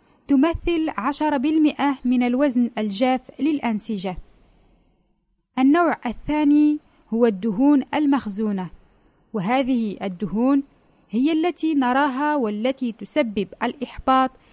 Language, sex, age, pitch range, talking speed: Arabic, female, 30-49, 225-285 Hz, 80 wpm